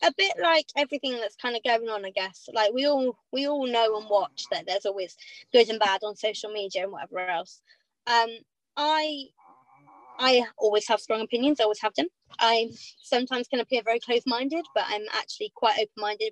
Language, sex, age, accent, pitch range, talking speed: English, female, 20-39, British, 210-270 Hz, 195 wpm